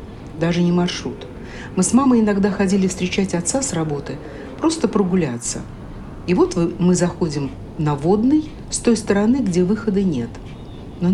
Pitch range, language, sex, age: 140-210 Hz, Russian, female, 60-79